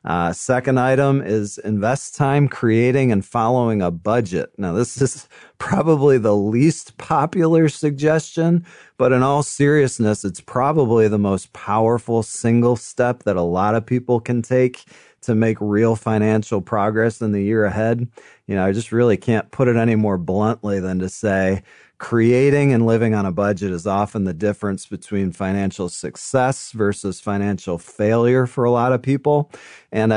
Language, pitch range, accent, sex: English, 105-130 Hz, American, male